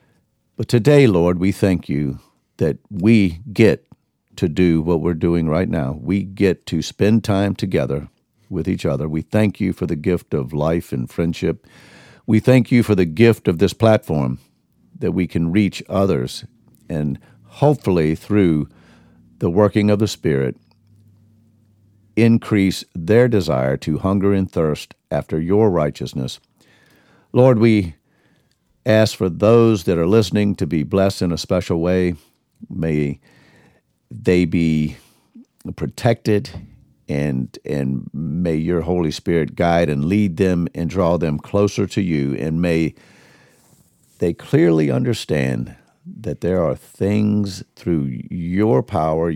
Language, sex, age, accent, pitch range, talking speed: English, male, 50-69, American, 80-105 Hz, 135 wpm